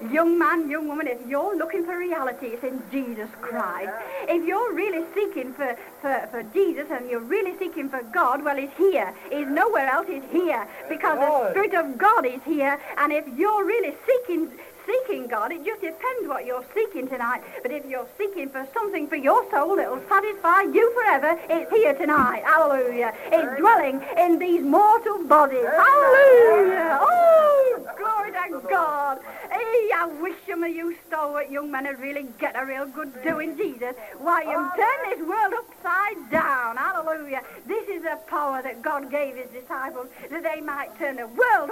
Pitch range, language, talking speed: 280-375 Hz, English, 180 wpm